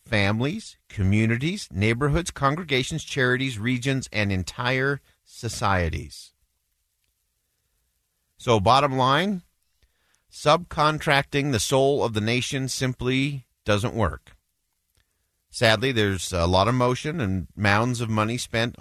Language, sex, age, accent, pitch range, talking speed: English, male, 50-69, American, 90-130 Hz, 100 wpm